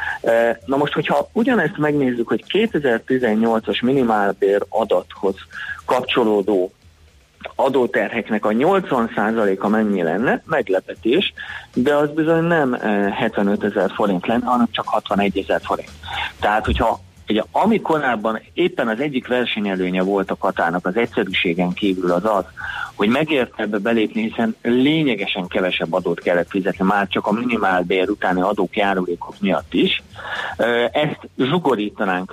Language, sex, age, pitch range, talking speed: Hungarian, male, 30-49, 95-125 Hz, 125 wpm